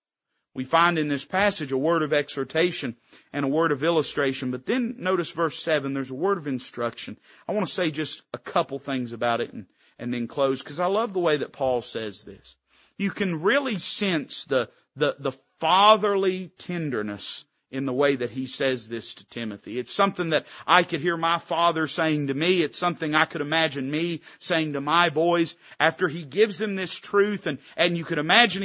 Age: 40-59